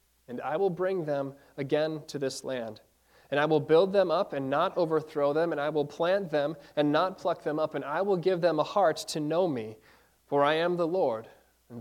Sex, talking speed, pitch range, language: male, 230 wpm, 140-175 Hz, English